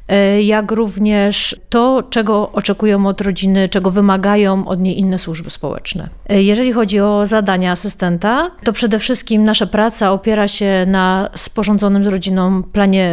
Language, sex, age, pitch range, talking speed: Polish, female, 30-49, 185-210 Hz, 140 wpm